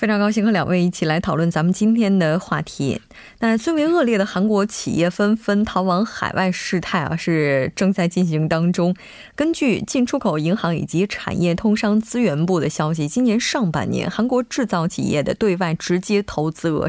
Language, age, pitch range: Korean, 20-39, 165-215 Hz